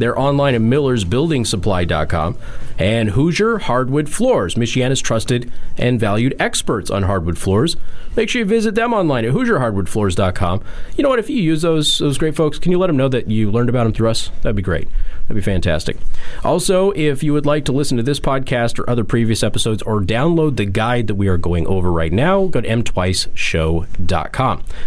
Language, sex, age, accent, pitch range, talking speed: English, male, 30-49, American, 105-145 Hz, 195 wpm